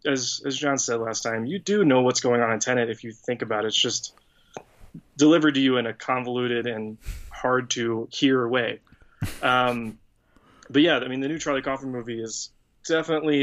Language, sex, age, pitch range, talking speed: English, male, 20-39, 120-140 Hz, 195 wpm